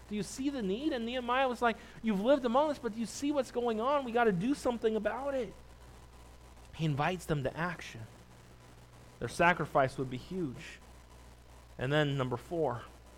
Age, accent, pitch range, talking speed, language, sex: 30-49, American, 140-215 Hz, 185 wpm, English, male